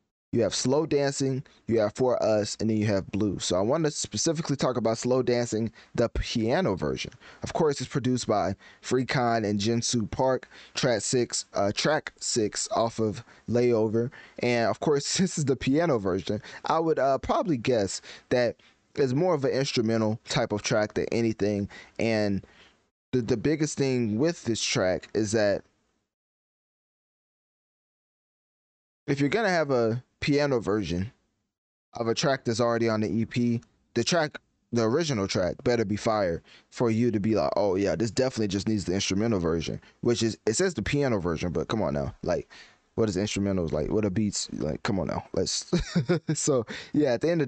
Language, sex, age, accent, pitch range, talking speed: English, male, 20-39, American, 105-135 Hz, 185 wpm